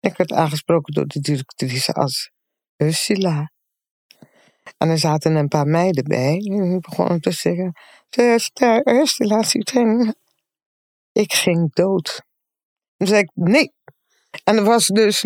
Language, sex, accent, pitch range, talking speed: Dutch, female, Dutch, 175-245 Hz, 130 wpm